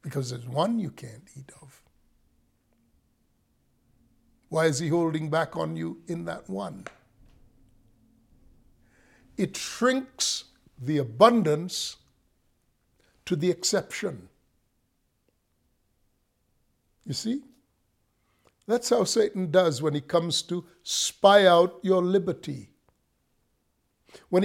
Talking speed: 95 wpm